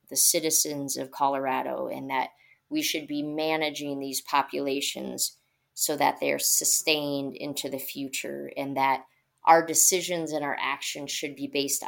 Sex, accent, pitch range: female, American, 140-165 Hz